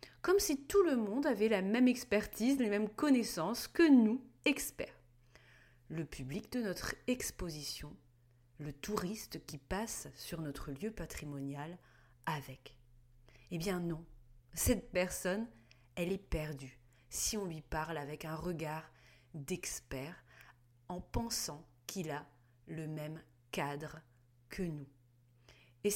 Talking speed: 125 wpm